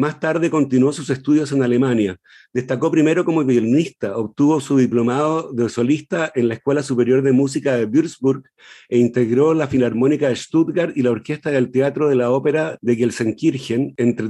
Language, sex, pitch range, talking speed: Spanish, male, 125-155 Hz, 170 wpm